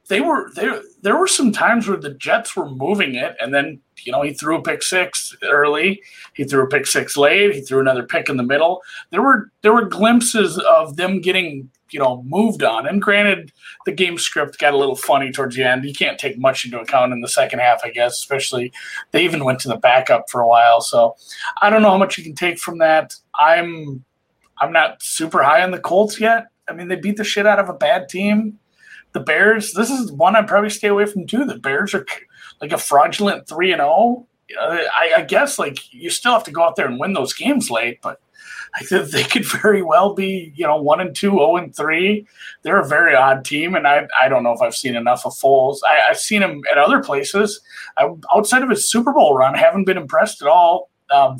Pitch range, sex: 140-210 Hz, male